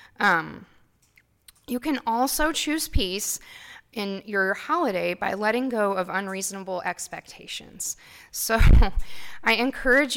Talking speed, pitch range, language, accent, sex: 105 wpm, 180-225 Hz, English, American, female